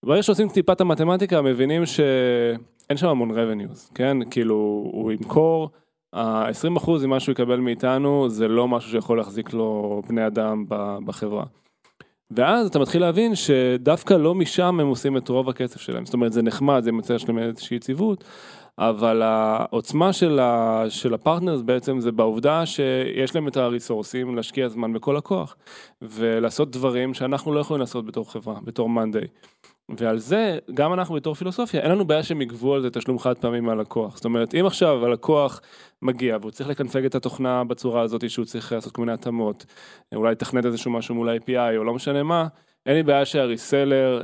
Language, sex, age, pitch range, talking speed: Hebrew, male, 20-39, 115-150 Hz, 170 wpm